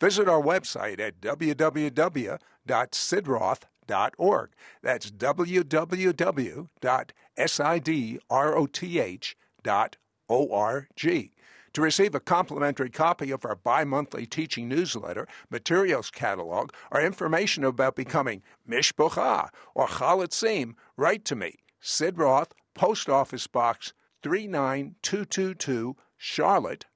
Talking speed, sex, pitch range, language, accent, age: 80 wpm, male, 130-165 Hz, English, American, 60-79